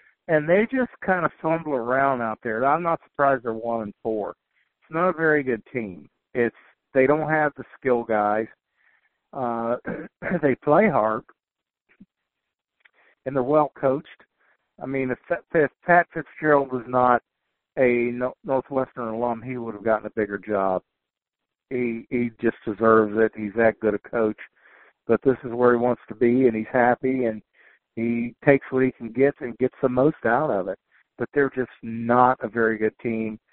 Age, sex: 60-79, male